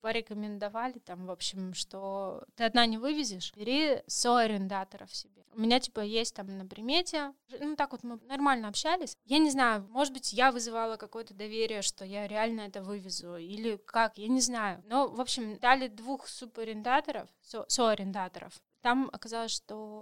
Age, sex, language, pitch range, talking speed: 20-39, female, Russian, 200-250 Hz, 160 wpm